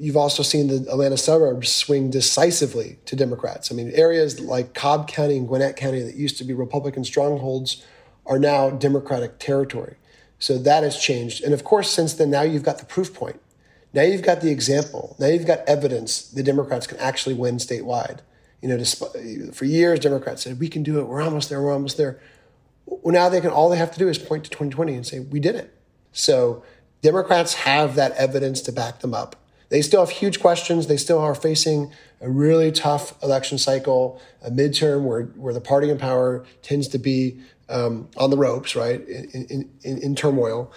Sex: male